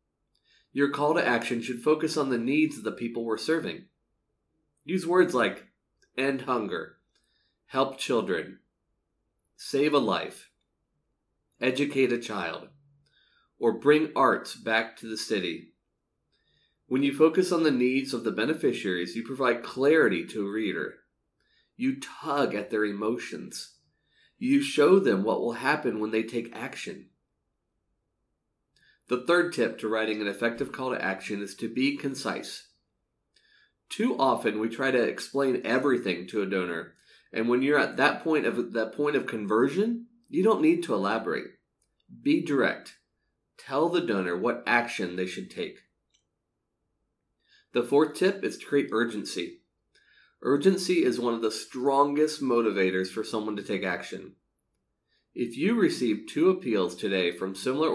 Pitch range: 110-145 Hz